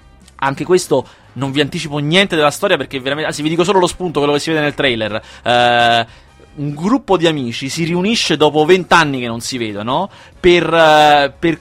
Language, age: Italian, 30-49